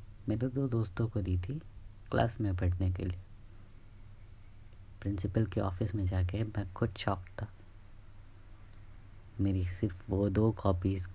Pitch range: 95-115 Hz